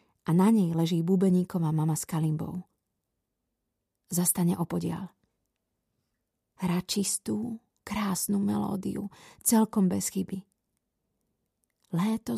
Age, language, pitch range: 30-49, Slovak, 180-215 Hz